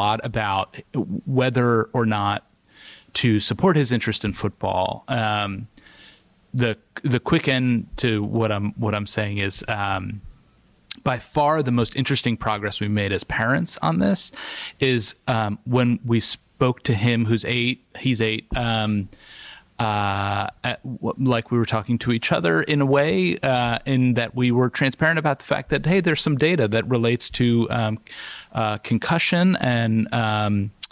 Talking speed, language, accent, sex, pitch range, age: 160 wpm, English, American, male, 105-135 Hz, 30-49